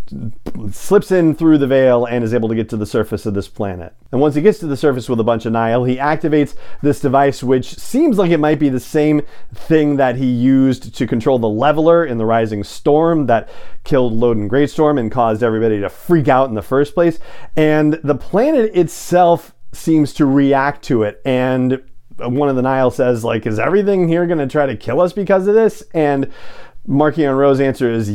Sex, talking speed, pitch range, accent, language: male, 210 wpm, 115-150 Hz, American, English